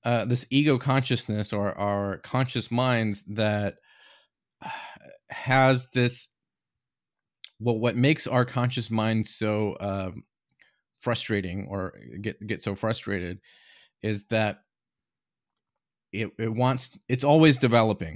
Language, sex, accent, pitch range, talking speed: English, male, American, 100-120 Hz, 110 wpm